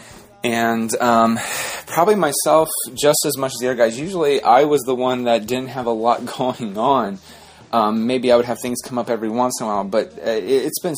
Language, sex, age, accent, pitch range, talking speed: English, male, 30-49, American, 115-135 Hz, 215 wpm